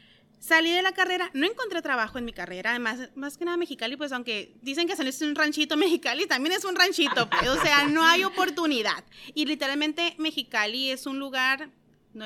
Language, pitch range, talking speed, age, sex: Spanish, 230-310 Hz, 195 wpm, 30-49, female